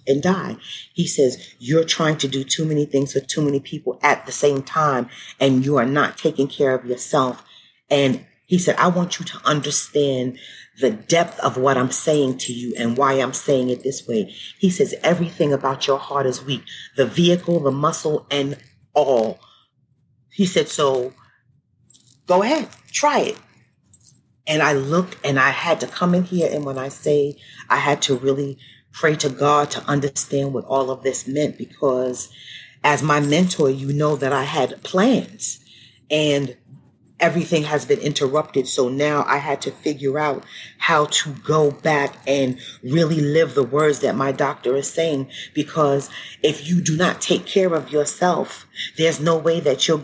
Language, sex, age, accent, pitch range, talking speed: English, female, 40-59, American, 135-160 Hz, 180 wpm